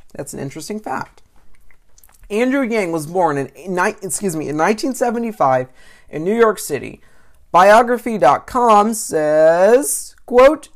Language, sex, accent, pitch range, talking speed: English, male, American, 145-215 Hz, 115 wpm